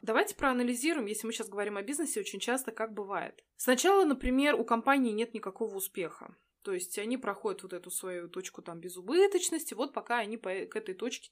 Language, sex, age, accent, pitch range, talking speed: Russian, female, 20-39, native, 205-265 Hz, 185 wpm